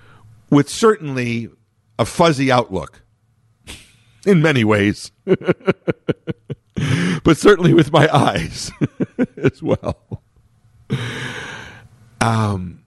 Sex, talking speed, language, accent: male, 75 wpm, English, American